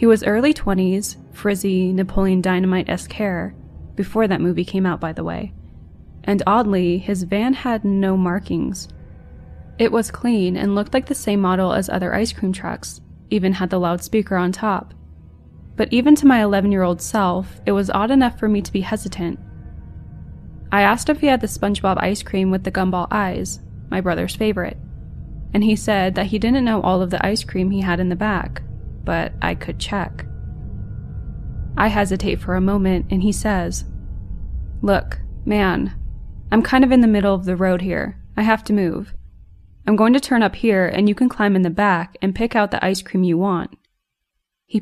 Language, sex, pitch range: English, female, 175-210 Hz